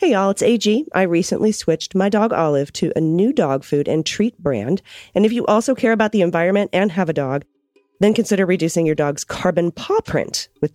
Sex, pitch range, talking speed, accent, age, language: female, 150-205 Hz, 220 wpm, American, 40-59, English